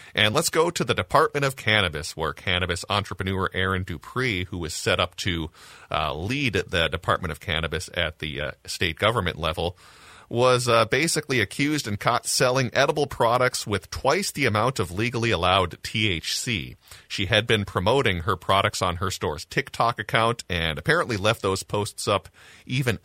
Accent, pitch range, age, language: American, 85-110 Hz, 30-49, English